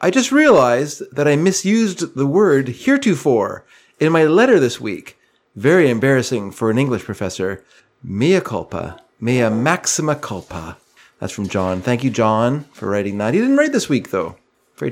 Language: English